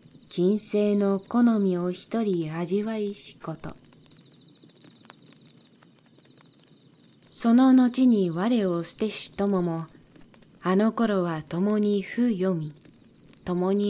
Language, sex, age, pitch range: Japanese, female, 20-39, 180-220 Hz